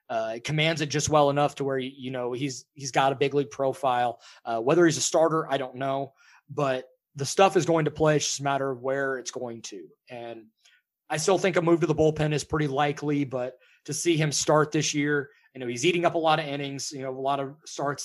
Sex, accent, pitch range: male, American, 130-150 Hz